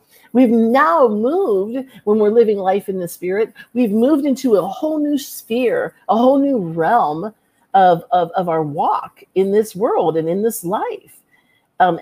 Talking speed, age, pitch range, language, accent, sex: 170 wpm, 50-69, 200-290 Hz, English, American, female